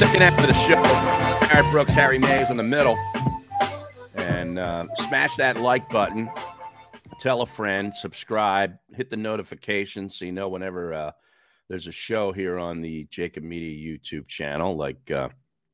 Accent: American